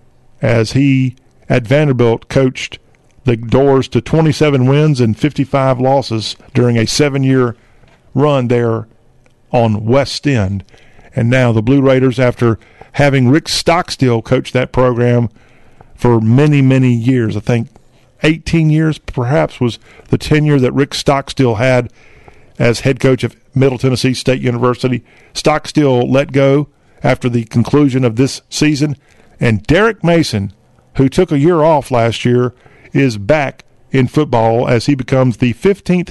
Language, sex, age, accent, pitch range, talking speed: English, male, 50-69, American, 120-145 Hz, 140 wpm